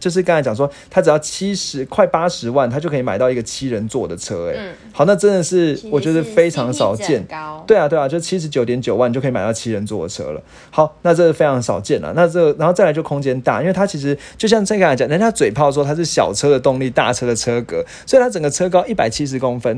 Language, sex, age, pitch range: Chinese, male, 30-49, 130-175 Hz